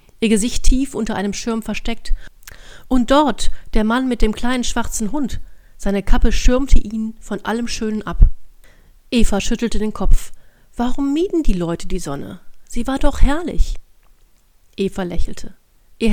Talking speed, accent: 155 wpm, German